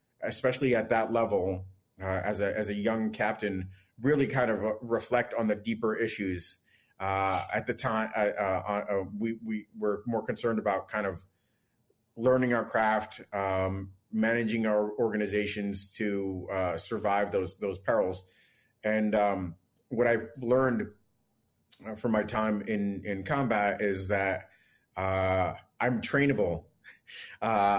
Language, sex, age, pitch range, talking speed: English, male, 30-49, 100-115 Hz, 135 wpm